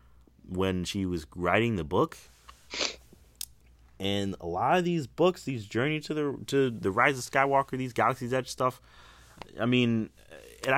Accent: American